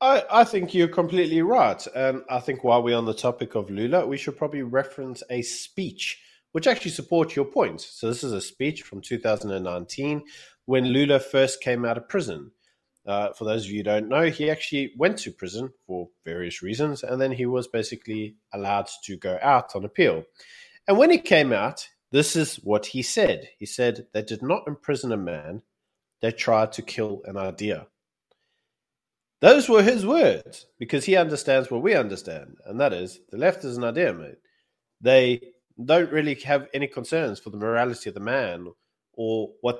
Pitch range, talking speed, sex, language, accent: 110-150 Hz, 190 wpm, male, English, Australian